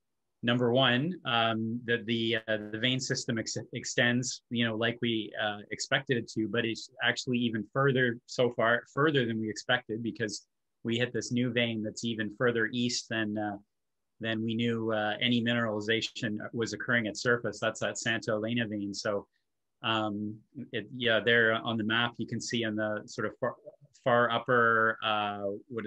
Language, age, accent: English, 30-49, American